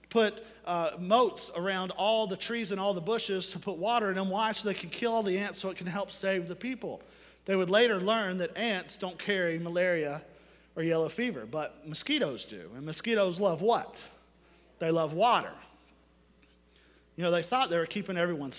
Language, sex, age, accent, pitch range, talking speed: English, male, 40-59, American, 165-210 Hz, 195 wpm